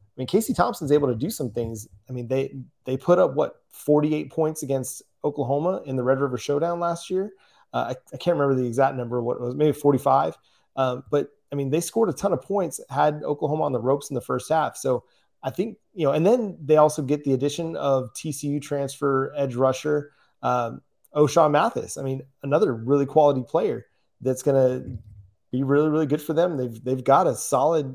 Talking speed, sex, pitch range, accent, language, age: 215 wpm, male, 125-150 Hz, American, English, 30-49